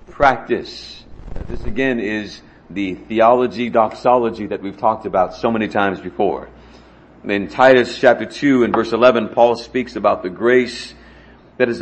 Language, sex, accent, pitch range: English, male, American, 105-135 Hz